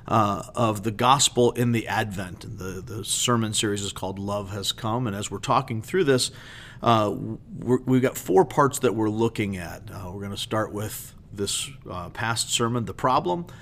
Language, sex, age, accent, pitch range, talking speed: English, male, 40-59, American, 105-130 Hz, 200 wpm